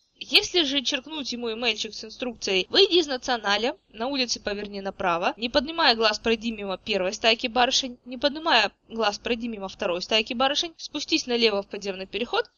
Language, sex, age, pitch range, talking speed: Russian, female, 20-39, 200-285 Hz, 165 wpm